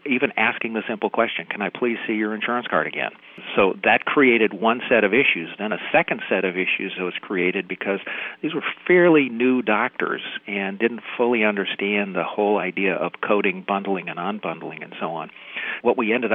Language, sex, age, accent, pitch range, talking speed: English, male, 50-69, American, 95-110 Hz, 190 wpm